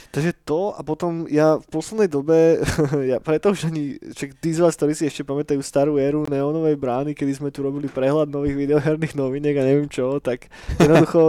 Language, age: Slovak, 20-39